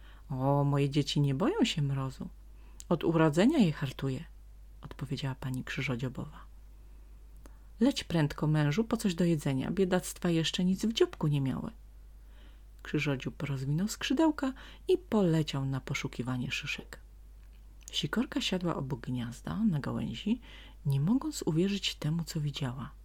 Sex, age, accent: female, 30-49, native